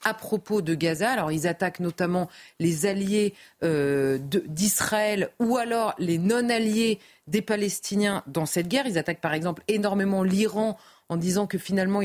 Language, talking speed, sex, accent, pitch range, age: French, 160 wpm, female, French, 175-220 Hz, 30-49